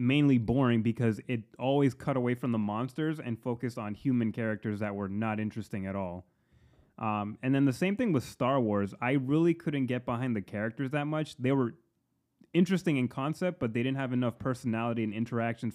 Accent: American